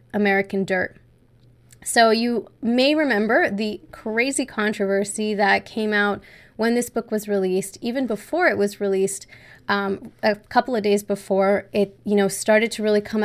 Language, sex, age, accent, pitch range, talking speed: English, female, 20-39, American, 195-230 Hz, 160 wpm